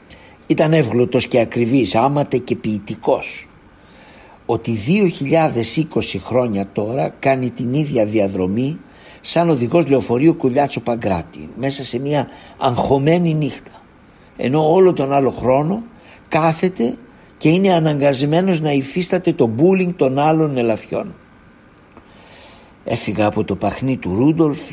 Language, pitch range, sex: Greek, 115-160 Hz, male